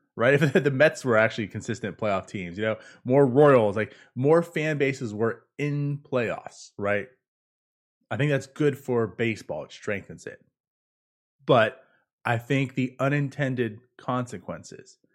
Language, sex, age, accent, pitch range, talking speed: English, male, 30-49, American, 120-160 Hz, 145 wpm